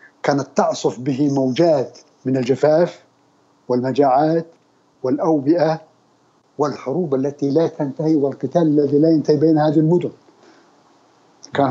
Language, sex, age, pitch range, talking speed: Arabic, male, 50-69, 145-180 Hz, 100 wpm